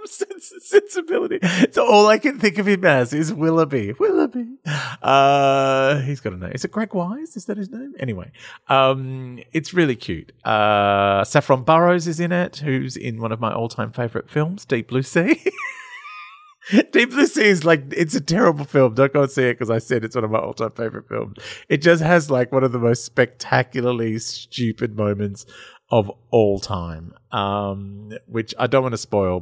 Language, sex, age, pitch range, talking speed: English, male, 30-49, 115-185 Hz, 190 wpm